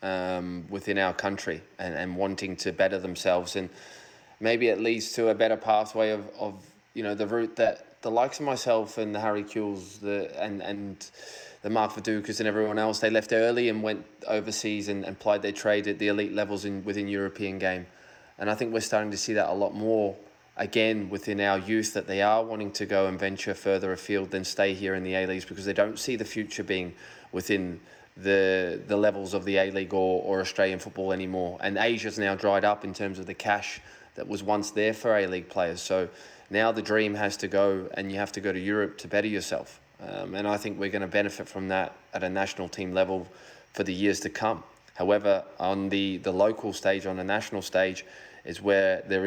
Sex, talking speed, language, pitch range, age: male, 215 wpm, English, 95-110 Hz, 20-39